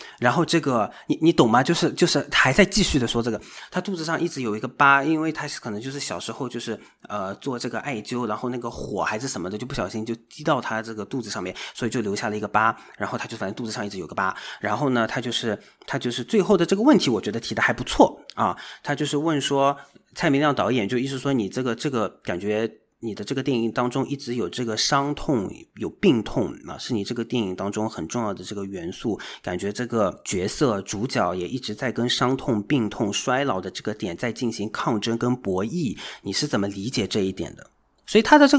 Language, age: Chinese, 30-49